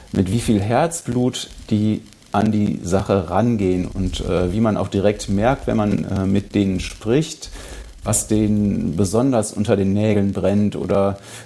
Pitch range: 100-115 Hz